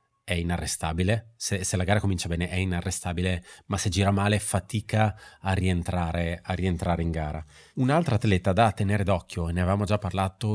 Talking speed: 175 wpm